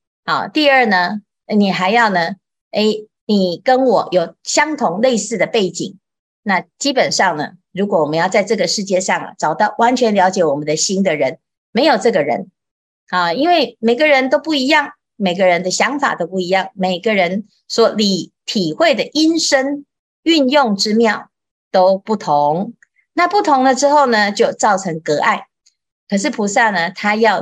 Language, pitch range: Chinese, 190-275 Hz